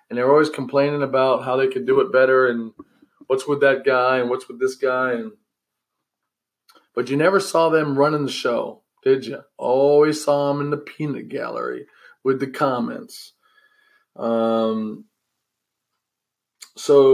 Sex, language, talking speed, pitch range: male, English, 155 wpm, 125-165 Hz